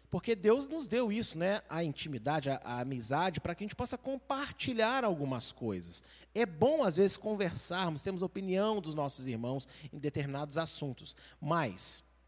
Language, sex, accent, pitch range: Portuguese, male, Brazilian, 135-200 Hz